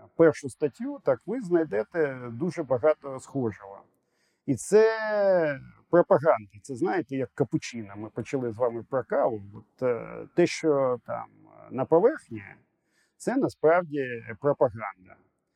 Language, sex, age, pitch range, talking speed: Ukrainian, male, 40-59, 120-160 Hz, 110 wpm